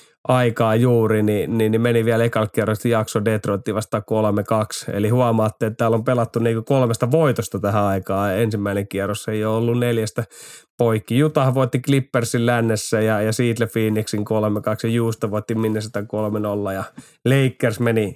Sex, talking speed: male, 160 wpm